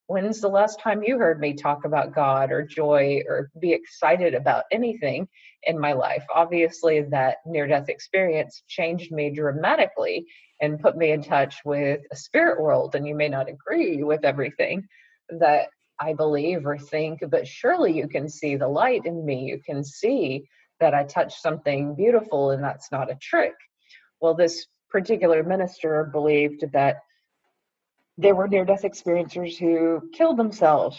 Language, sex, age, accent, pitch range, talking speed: English, female, 30-49, American, 150-215 Hz, 160 wpm